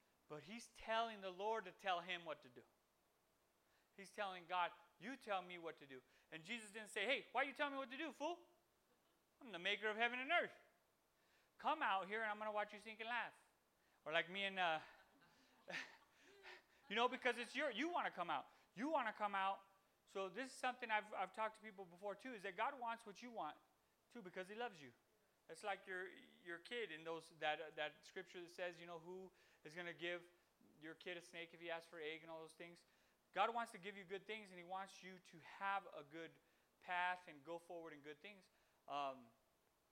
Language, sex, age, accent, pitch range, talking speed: English, male, 30-49, American, 165-215 Hz, 230 wpm